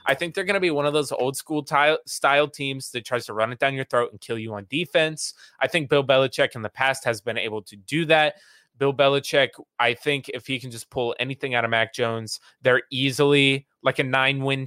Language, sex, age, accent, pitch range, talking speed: English, male, 20-39, American, 110-145 Hz, 230 wpm